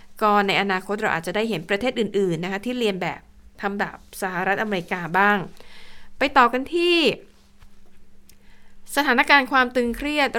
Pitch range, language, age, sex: 200-255 Hz, Thai, 60-79, female